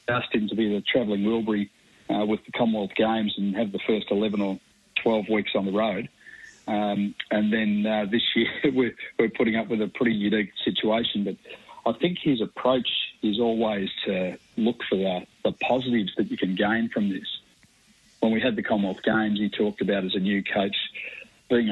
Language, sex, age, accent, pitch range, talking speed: English, male, 40-59, Australian, 100-115 Hz, 195 wpm